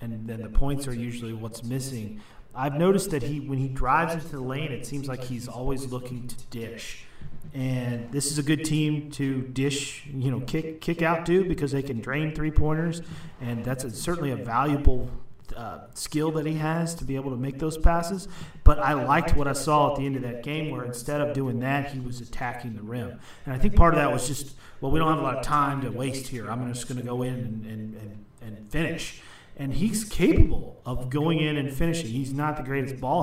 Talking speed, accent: 230 wpm, American